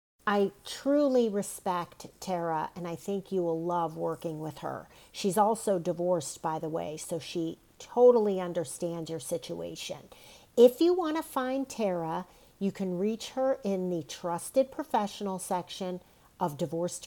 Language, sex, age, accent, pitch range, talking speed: English, female, 50-69, American, 175-235 Hz, 150 wpm